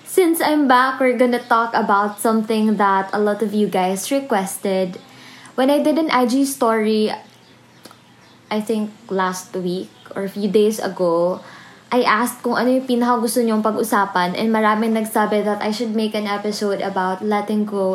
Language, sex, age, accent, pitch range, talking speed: Filipino, female, 20-39, native, 205-245 Hz, 170 wpm